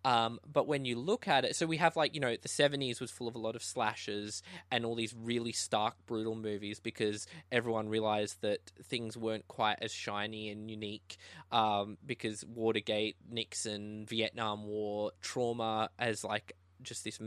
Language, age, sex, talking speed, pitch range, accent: English, 20-39, male, 175 wpm, 100-120 Hz, Australian